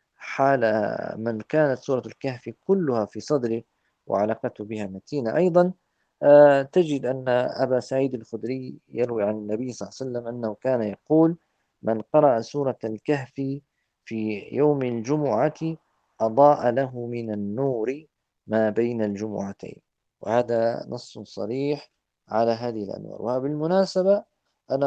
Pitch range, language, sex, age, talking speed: 110-140 Hz, Arabic, male, 40-59, 120 wpm